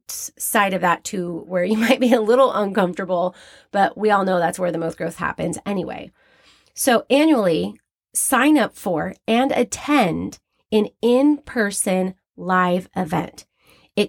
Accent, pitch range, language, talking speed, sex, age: American, 200-260 Hz, English, 150 wpm, female, 30-49